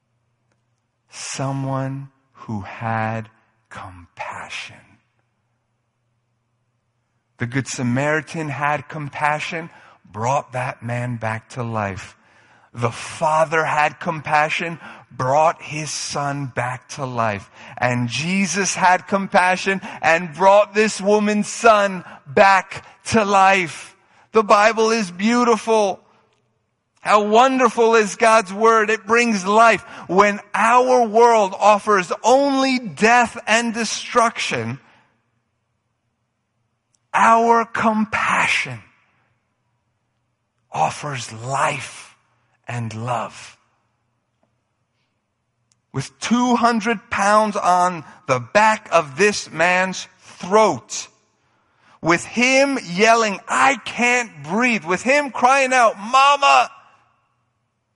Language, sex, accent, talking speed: English, male, American, 85 wpm